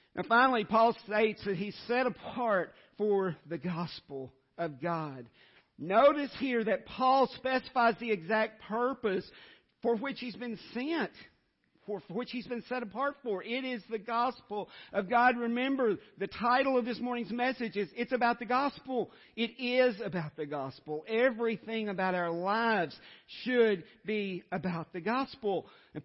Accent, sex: American, male